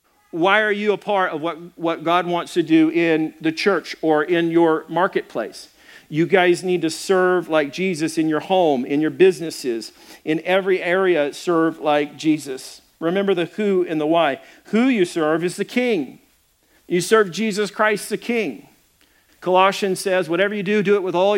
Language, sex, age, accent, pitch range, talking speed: English, male, 40-59, American, 160-205 Hz, 180 wpm